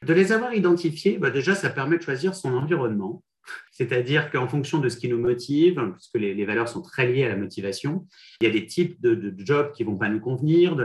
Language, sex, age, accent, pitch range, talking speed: French, male, 40-59, French, 125-175 Hz, 250 wpm